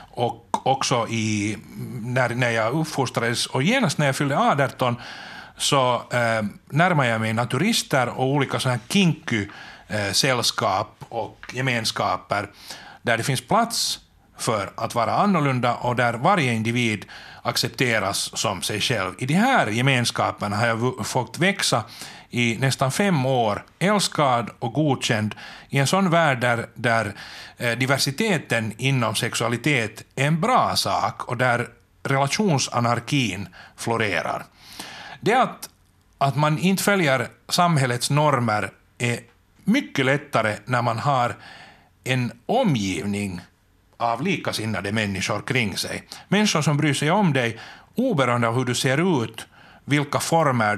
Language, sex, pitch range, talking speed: Finnish, male, 115-145 Hz, 130 wpm